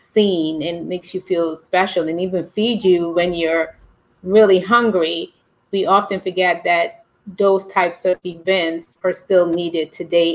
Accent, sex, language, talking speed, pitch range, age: American, female, English, 150 wpm, 170-195 Hz, 30-49